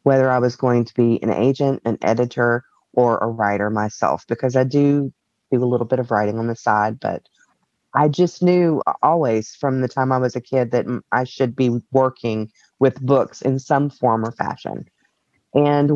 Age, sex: 30-49, female